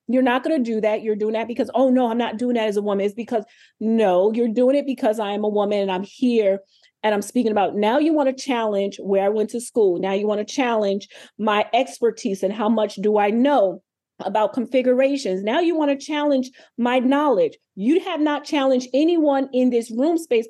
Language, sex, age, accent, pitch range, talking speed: English, female, 30-49, American, 205-265 Hz, 230 wpm